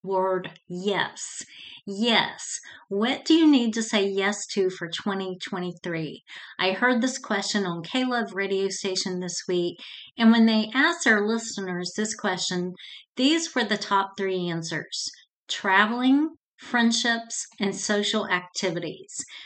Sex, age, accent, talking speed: female, 40-59, American, 130 wpm